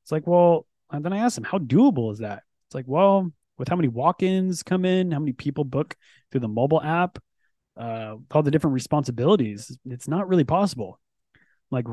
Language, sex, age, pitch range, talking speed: English, male, 20-39, 130-175 Hz, 195 wpm